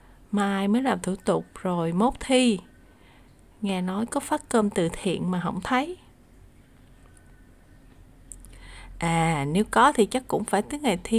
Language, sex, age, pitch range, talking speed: Vietnamese, female, 20-39, 190-230 Hz, 150 wpm